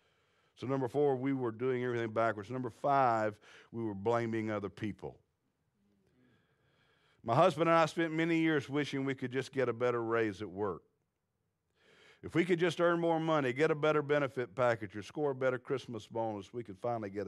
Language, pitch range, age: English, 105-130 Hz, 50-69